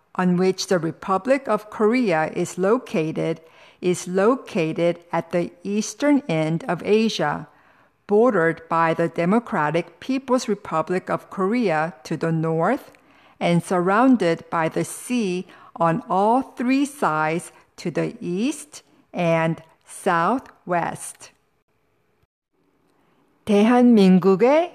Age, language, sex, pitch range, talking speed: 50-69, English, female, 165-240 Hz, 100 wpm